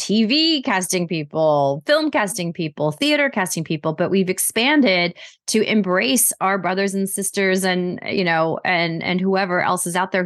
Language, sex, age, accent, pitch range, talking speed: English, female, 30-49, American, 175-215 Hz, 165 wpm